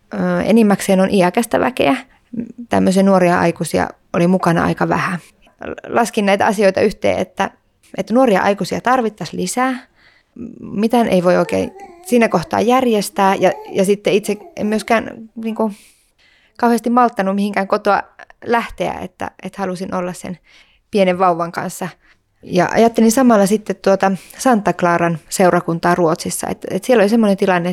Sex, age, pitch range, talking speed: female, 20-39, 175-220 Hz, 140 wpm